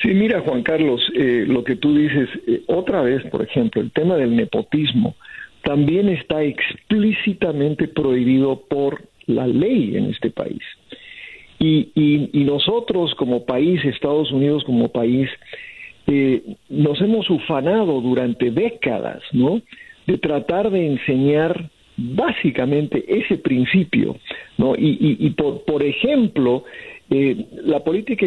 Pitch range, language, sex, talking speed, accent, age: 135-195 Hz, Spanish, male, 130 wpm, Mexican, 50-69